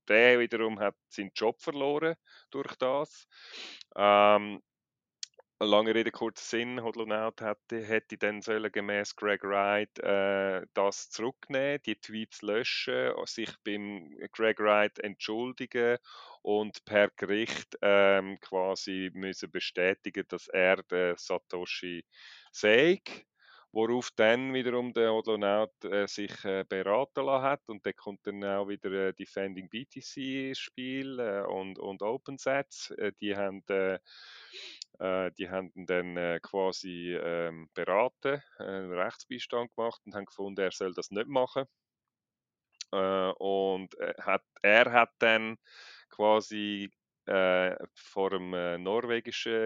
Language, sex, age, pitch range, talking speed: English, male, 30-49, 95-115 Hz, 120 wpm